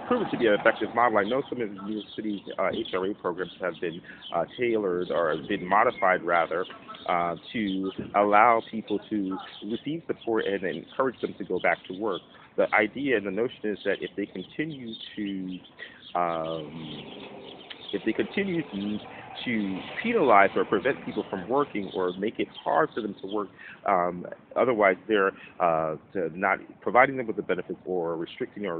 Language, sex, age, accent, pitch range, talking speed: English, male, 40-59, American, 95-145 Hz, 175 wpm